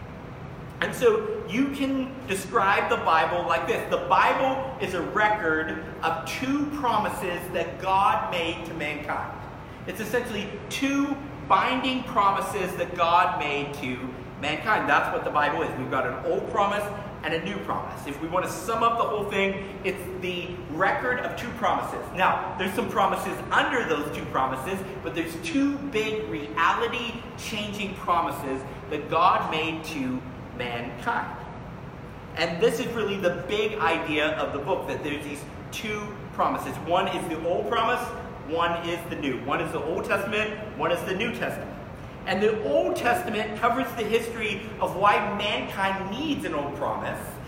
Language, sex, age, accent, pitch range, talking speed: English, male, 40-59, American, 165-225 Hz, 160 wpm